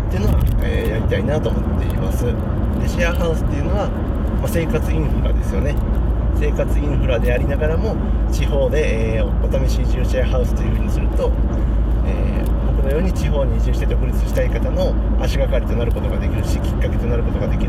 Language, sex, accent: Japanese, male, native